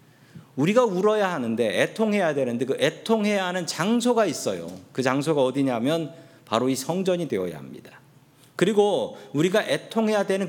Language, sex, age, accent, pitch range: Korean, male, 40-59, native, 135-205 Hz